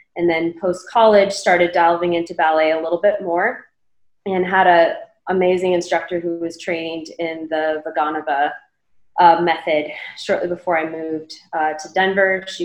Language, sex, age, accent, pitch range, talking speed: English, female, 20-39, American, 165-200 Hz, 155 wpm